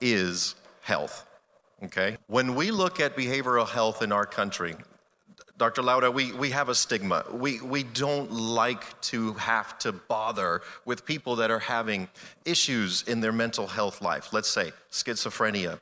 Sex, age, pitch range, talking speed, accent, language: male, 40-59, 115-150 Hz, 155 wpm, American, English